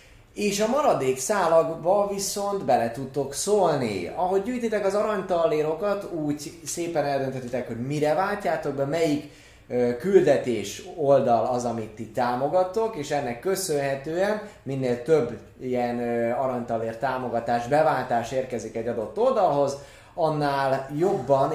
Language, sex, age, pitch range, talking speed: Hungarian, male, 20-39, 115-155 Hz, 115 wpm